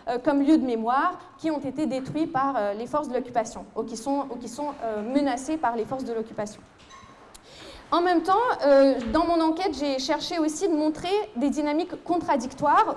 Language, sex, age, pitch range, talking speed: French, female, 30-49, 245-315 Hz, 190 wpm